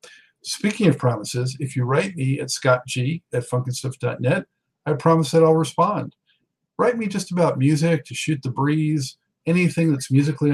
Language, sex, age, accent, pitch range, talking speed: English, male, 50-69, American, 125-155 Hz, 155 wpm